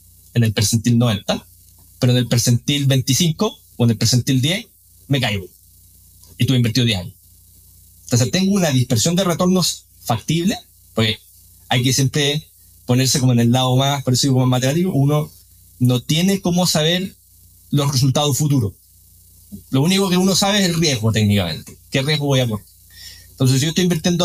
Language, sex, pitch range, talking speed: Spanish, male, 90-155 Hz, 170 wpm